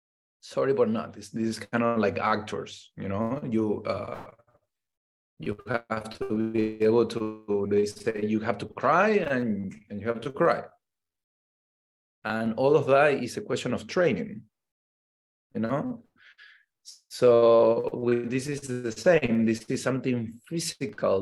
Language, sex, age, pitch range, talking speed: English, male, 30-49, 105-120 Hz, 150 wpm